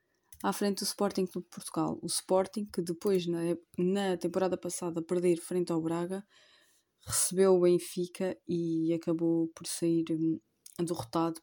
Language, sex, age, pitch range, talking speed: Portuguese, female, 20-39, 170-190 Hz, 140 wpm